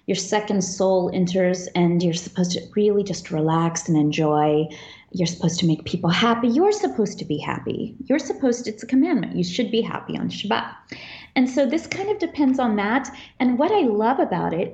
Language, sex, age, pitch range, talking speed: English, female, 30-49, 195-280 Hz, 205 wpm